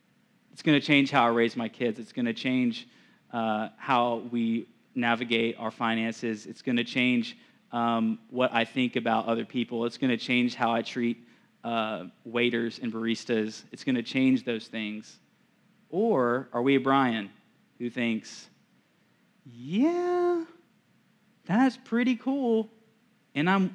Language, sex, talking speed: English, male, 150 wpm